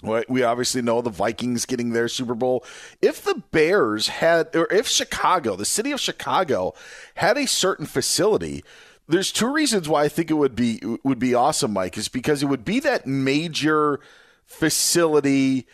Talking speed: 170 wpm